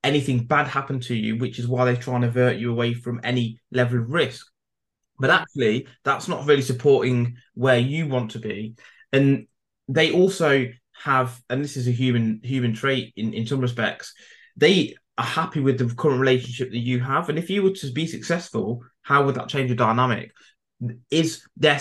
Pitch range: 120-140 Hz